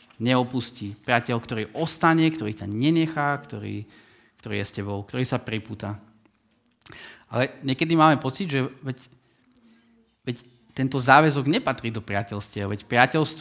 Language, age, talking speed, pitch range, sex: Slovak, 20-39, 120 wpm, 110-150 Hz, male